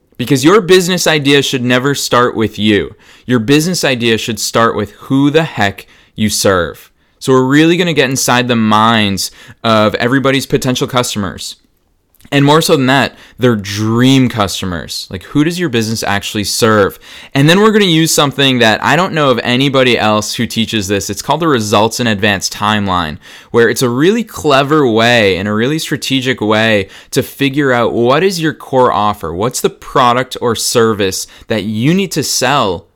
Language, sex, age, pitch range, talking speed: English, male, 20-39, 105-135 Hz, 180 wpm